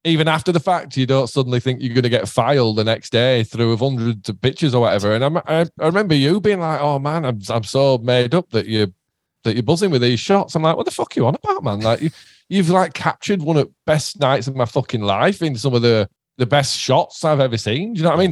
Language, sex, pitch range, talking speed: English, male, 105-140 Hz, 280 wpm